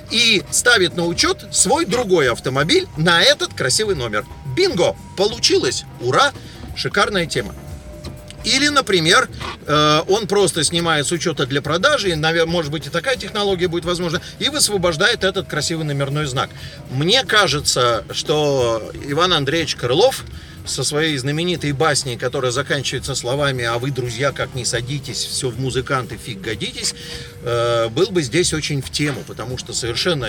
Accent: native